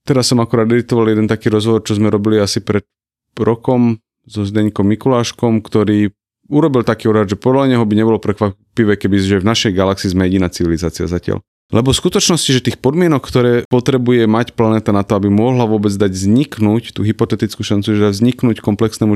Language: Slovak